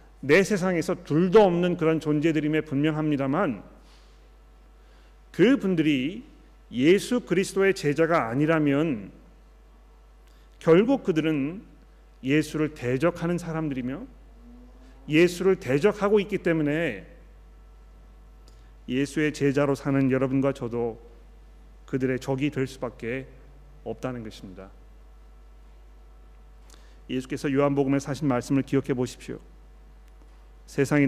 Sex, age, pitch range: male, 40-59, 120-155 Hz